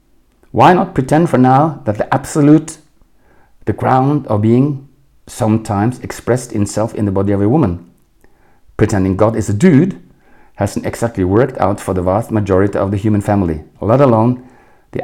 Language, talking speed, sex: English, 165 wpm, male